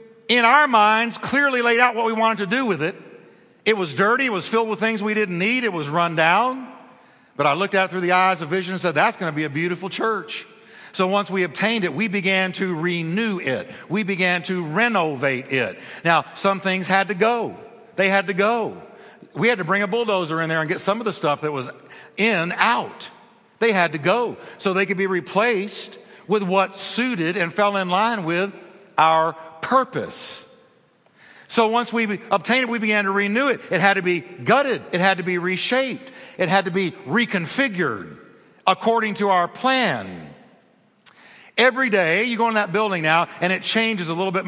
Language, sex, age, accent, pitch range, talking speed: English, male, 50-69, American, 175-220 Hz, 205 wpm